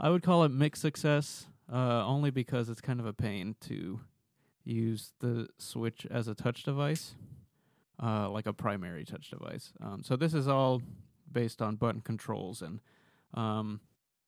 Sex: male